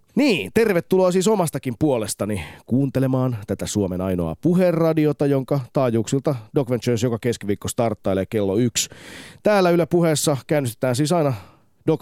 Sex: male